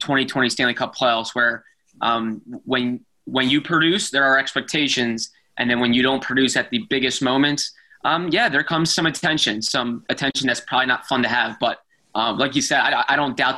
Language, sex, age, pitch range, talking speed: English, male, 20-39, 125-145 Hz, 205 wpm